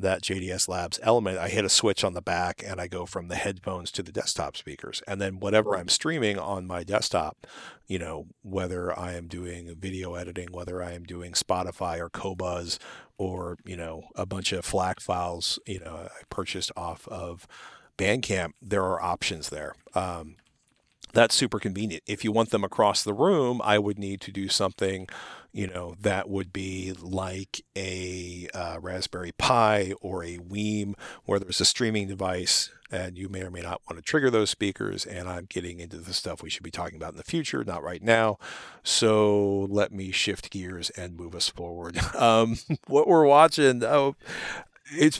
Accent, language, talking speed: American, English, 185 wpm